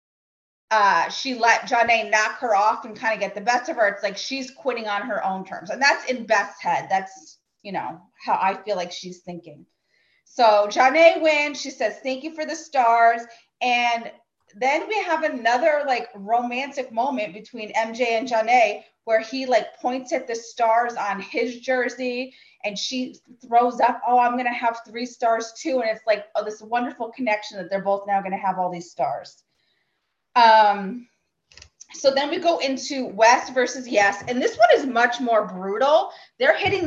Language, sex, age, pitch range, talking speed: English, female, 30-49, 215-275 Hz, 185 wpm